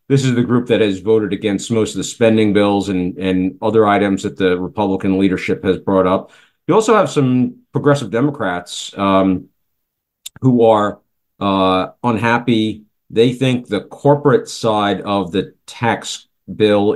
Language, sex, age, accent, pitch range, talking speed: English, male, 50-69, American, 95-115 Hz, 155 wpm